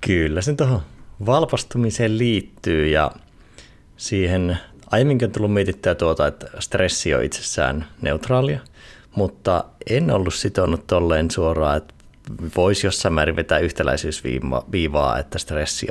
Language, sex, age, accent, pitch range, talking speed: Finnish, male, 30-49, native, 75-100 Hz, 110 wpm